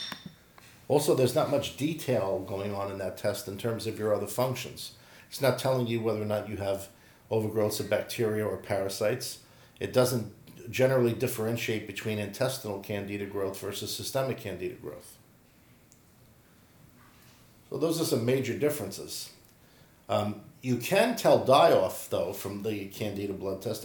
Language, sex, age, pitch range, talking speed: English, male, 50-69, 100-125 Hz, 150 wpm